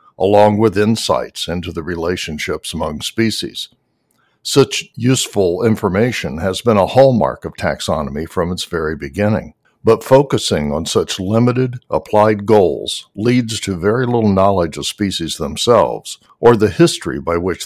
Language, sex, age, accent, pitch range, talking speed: English, male, 60-79, American, 90-115 Hz, 140 wpm